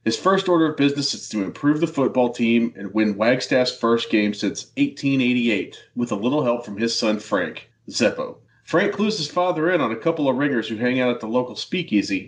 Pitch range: 115-145 Hz